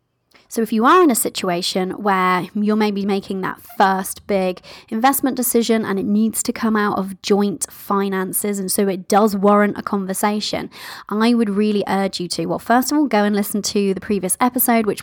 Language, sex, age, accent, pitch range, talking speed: English, female, 20-39, British, 190-235 Hz, 200 wpm